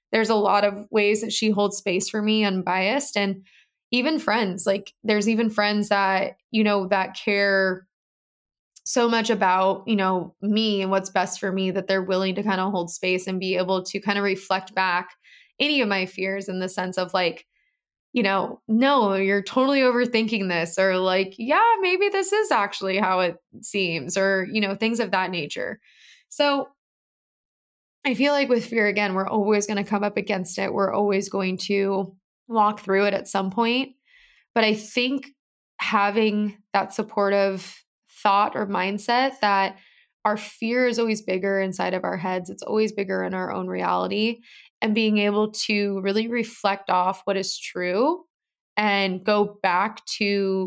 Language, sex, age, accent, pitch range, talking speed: English, female, 20-39, American, 190-220 Hz, 175 wpm